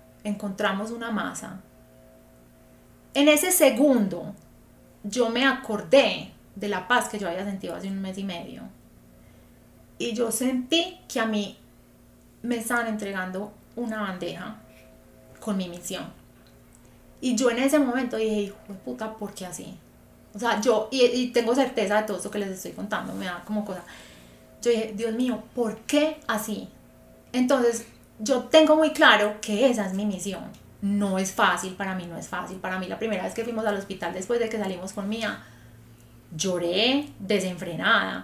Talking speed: 170 wpm